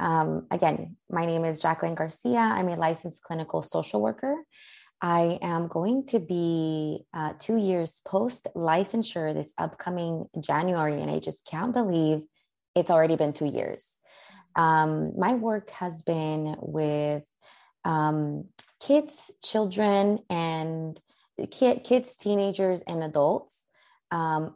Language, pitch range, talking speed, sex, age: English, 155-195 Hz, 120 wpm, female, 20-39